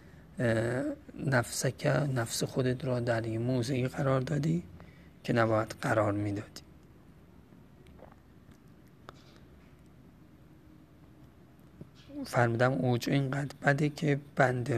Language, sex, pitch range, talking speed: Persian, male, 115-135 Hz, 75 wpm